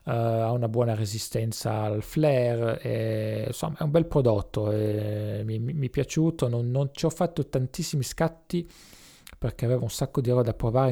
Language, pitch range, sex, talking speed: English, 115-145 Hz, male, 185 wpm